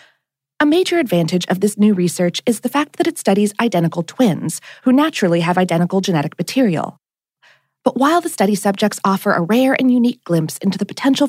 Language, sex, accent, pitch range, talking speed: English, female, American, 175-265 Hz, 185 wpm